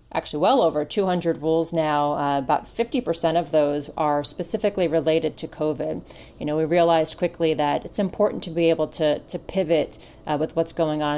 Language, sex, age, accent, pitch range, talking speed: English, female, 30-49, American, 155-185 Hz, 190 wpm